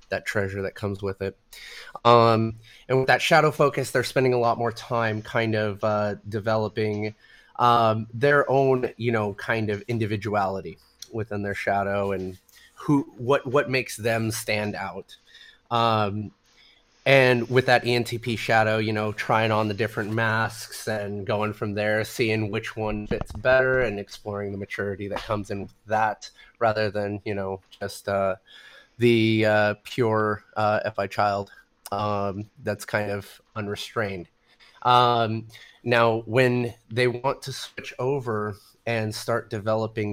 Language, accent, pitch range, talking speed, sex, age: English, American, 105-120 Hz, 150 wpm, male, 30-49